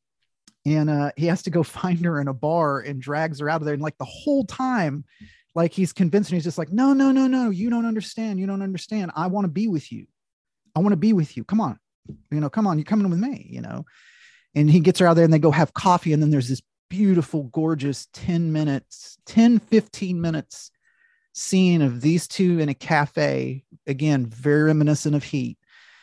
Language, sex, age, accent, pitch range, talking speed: English, male, 30-49, American, 140-190 Hz, 220 wpm